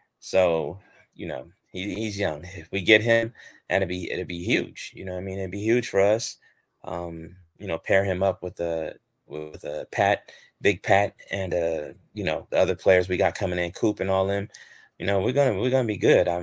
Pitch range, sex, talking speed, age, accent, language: 90-110 Hz, male, 225 wpm, 30-49, American, English